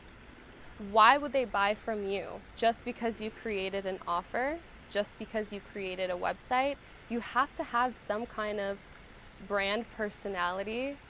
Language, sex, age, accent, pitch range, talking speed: English, female, 20-39, American, 200-240 Hz, 145 wpm